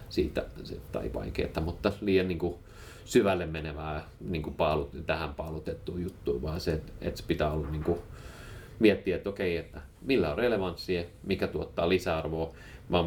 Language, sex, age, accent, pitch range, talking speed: Finnish, male, 30-49, native, 75-95 Hz, 145 wpm